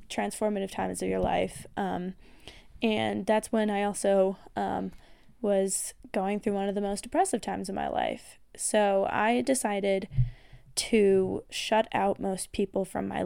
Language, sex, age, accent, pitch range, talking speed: English, female, 10-29, American, 180-215 Hz, 155 wpm